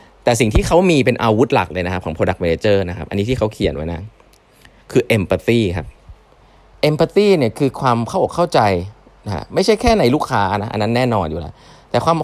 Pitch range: 95-135 Hz